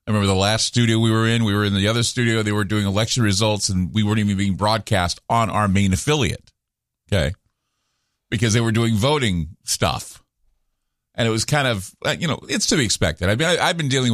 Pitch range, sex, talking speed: 100-135 Hz, male, 220 wpm